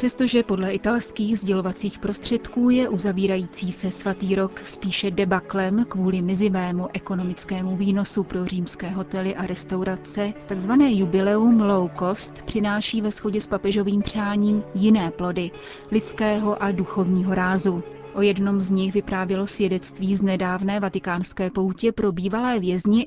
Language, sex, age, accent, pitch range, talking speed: Czech, female, 30-49, native, 185-210 Hz, 135 wpm